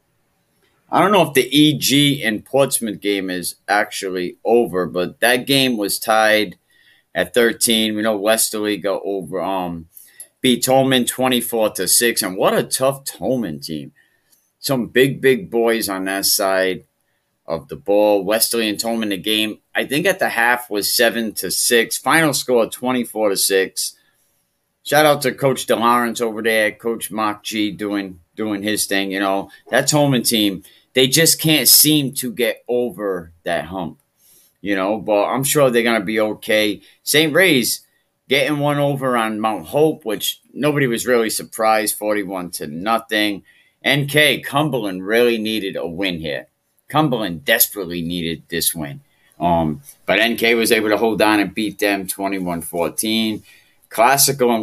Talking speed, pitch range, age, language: 160 wpm, 100-125 Hz, 30-49, English